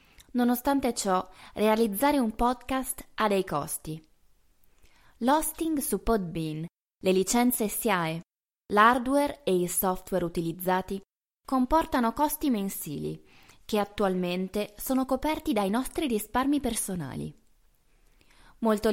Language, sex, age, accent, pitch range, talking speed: Italian, female, 20-39, native, 185-265 Hz, 100 wpm